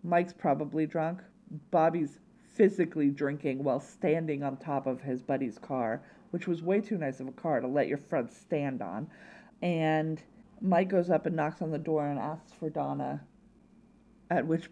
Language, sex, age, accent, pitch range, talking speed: English, female, 40-59, American, 155-215 Hz, 175 wpm